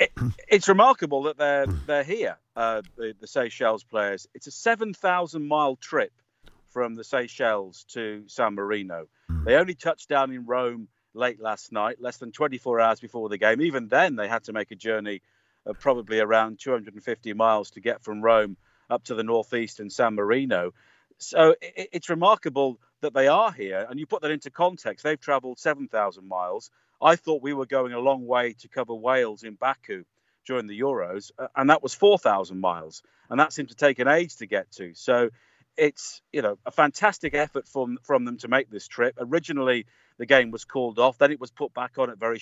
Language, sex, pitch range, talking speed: English, male, 115-155 Hz, 195 wpm